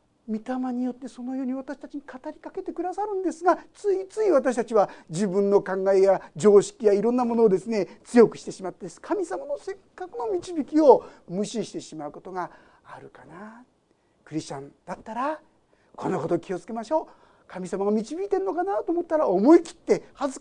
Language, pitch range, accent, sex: Japanese, 190-295 Hz, native, male